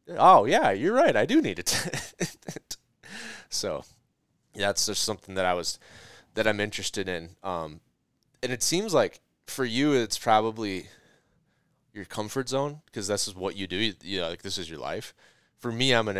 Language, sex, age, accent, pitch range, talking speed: English, male, 20-39, American, 85-105 Hz, 185 wpm